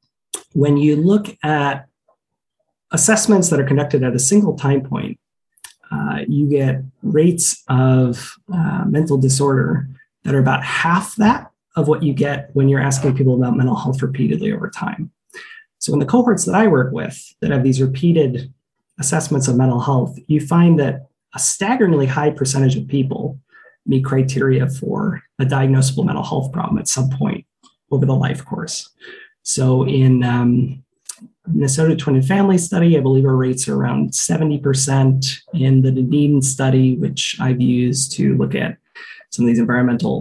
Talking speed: 165 wpm